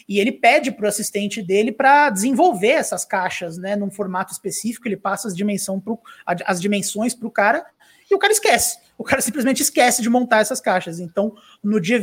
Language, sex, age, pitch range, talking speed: Portuguese, male, 20-39, 200-235 Hz, 200 wpm